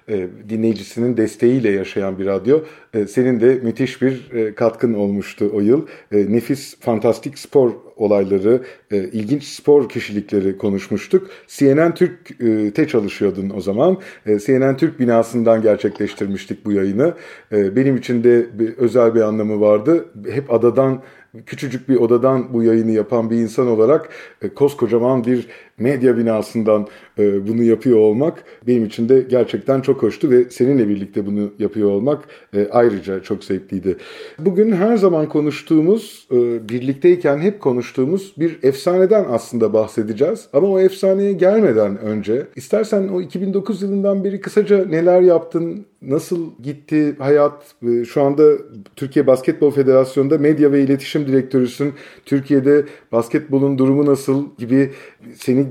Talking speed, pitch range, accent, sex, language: 125 wpm, 110-150 Hz, native, male, Turkish